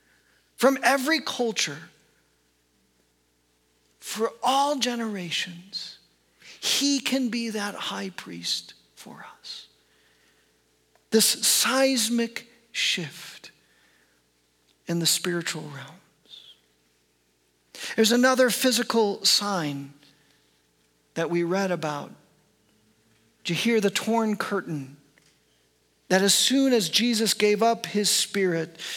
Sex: male